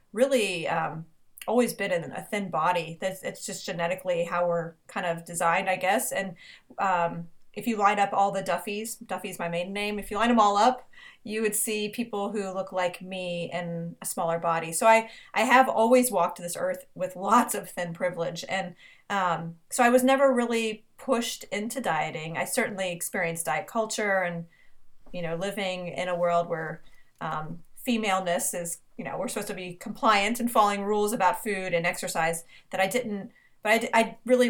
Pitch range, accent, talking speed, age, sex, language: 175-220 Hz, American, 190 wpm, 30-49, female, English